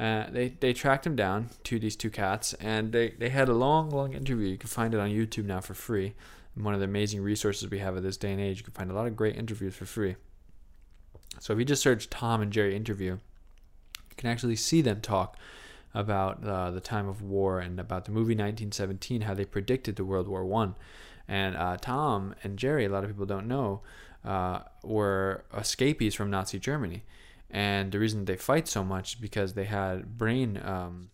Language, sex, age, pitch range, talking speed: English, male, 20-39, 95-115 Hz, 220 wpm